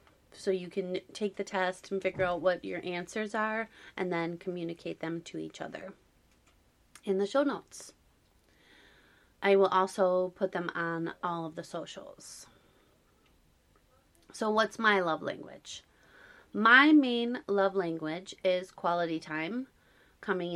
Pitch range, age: 170-200 Hz, 30-49